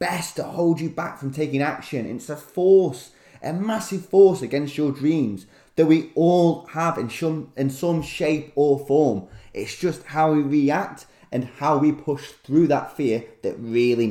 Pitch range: 120-165 Hz